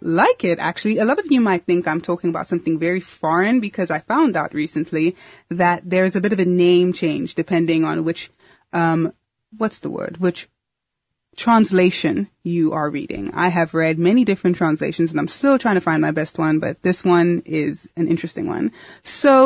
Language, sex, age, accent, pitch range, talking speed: English, female, 20-39, American, 165-200 Hz, 195 wpm